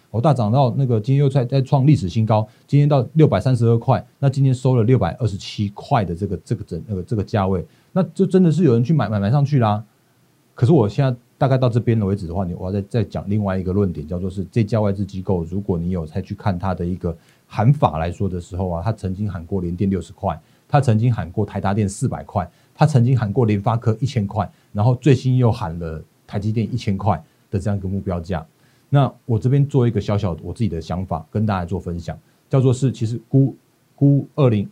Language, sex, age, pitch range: Chinese, male, 30-49, 95-130 Hz